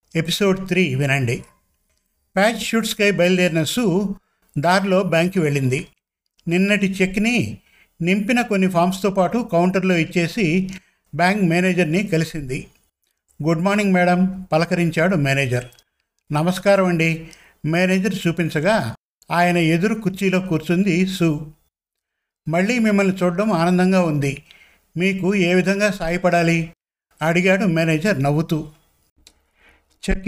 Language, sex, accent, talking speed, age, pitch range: Telugu, male, native, 95 wpm, 50-69, 160-195 Hz